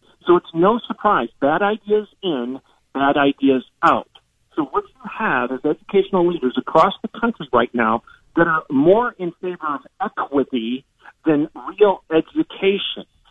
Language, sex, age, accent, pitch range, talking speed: English, male, 50-69, American, 160-260 Hz, 145 wpm